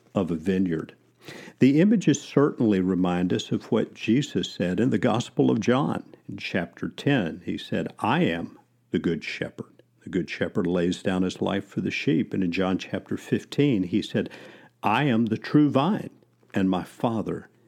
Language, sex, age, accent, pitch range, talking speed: English, male, 50-69, American, 90-115 Hz, 175 wpm